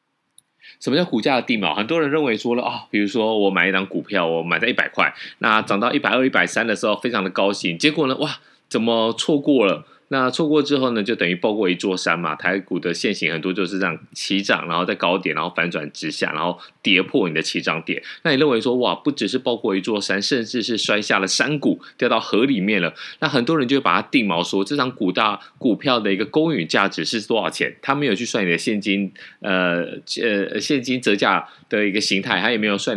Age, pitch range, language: 20-39, 95-145 Hz, Chinese